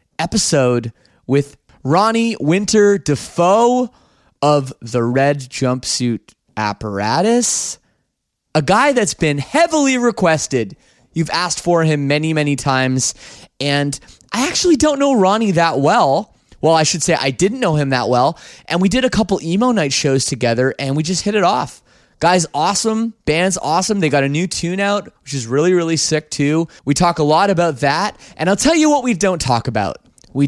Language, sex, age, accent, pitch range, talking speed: English, male, 20-39, American, 135-215 Hz, 175 wpm